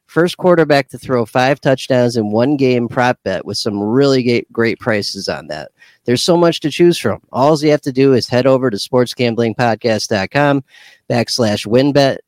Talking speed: 175 wpm